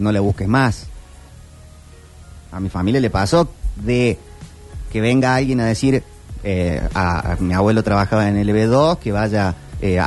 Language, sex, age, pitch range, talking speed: Spanish, male, 30-49, 100-150 Hz, 160 wpm